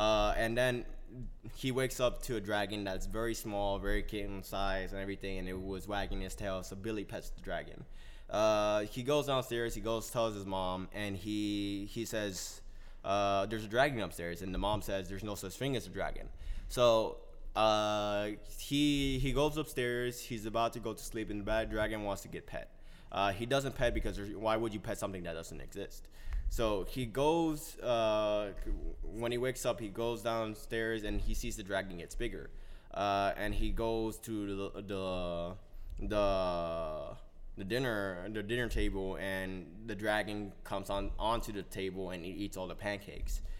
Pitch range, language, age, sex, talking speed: 95-115 Hz, English, 20-39, male, 185 wpm